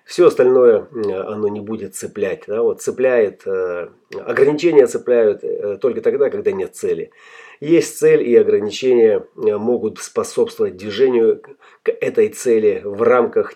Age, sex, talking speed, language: 30-49, male, 110 wpm, Russian